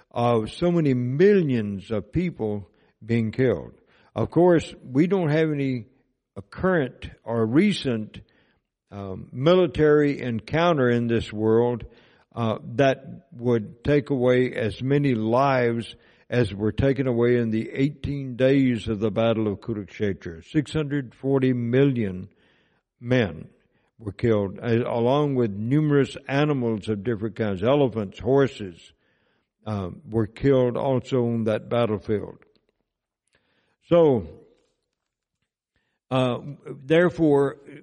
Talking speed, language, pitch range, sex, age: 110 wpm, English, 115-145 Hz, male, 60-79